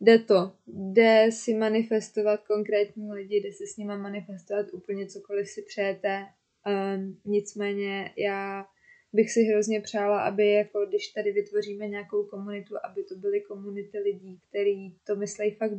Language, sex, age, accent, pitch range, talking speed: Czech, female, 20-39, native, 205-225 Hz, 150 wpm